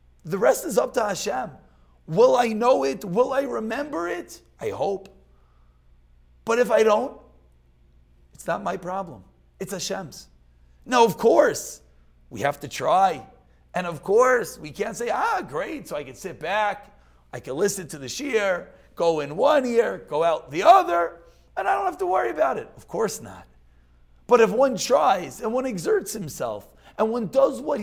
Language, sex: English, male